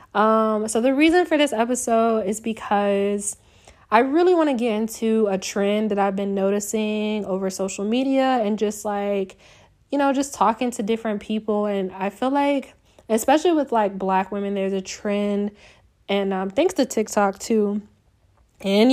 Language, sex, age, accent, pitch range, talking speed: English, female, 20-39, American, 200-240 Hz, 170 wpm